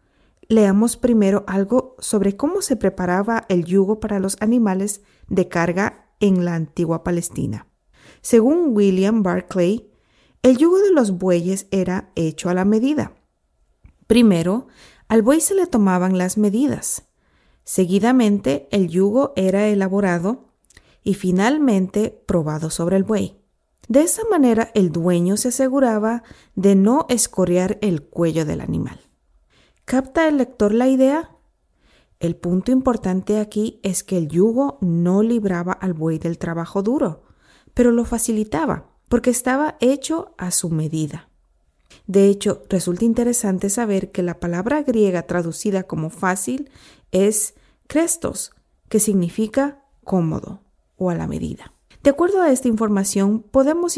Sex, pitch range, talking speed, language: female, 180-240 Hz, 135 wpm, Spanish